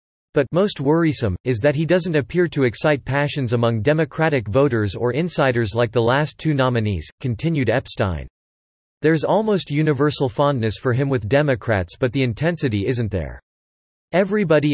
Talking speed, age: 150 wpm, 40-59